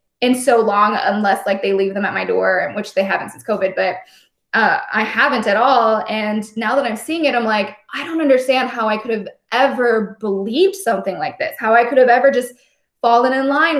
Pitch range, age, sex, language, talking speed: 205-255 Hz, 10-29, female, English, 220 wpm